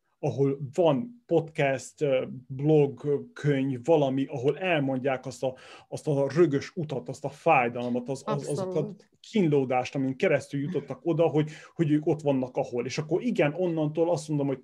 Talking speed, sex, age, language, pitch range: 160 wpm, male, 30-49, Hungarian, 135-165 Hz